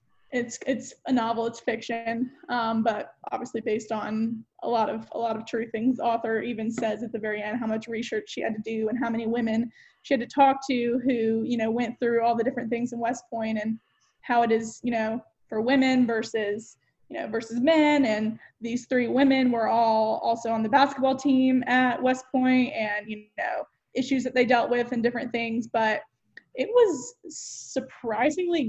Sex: female